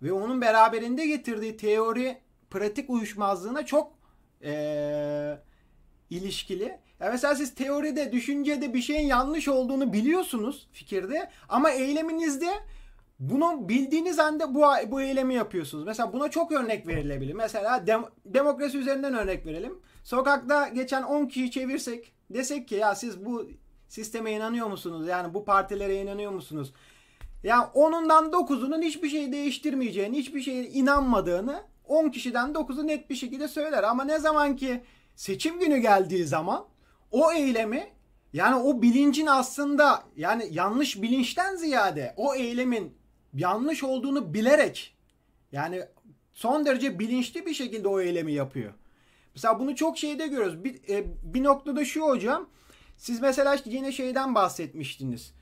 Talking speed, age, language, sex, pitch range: 130 wpm, 30-49, Turkish, male, 210-290 Hz